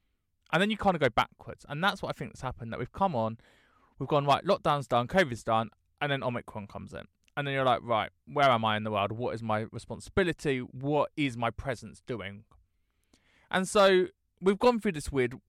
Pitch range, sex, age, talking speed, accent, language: 105-155 Hz, male, 20-39, 220 wpm, British, English